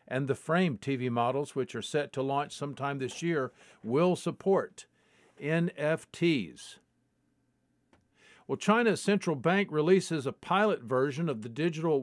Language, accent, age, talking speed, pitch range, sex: English, American, 50-69, 135 wpm, 135-165 Hz, male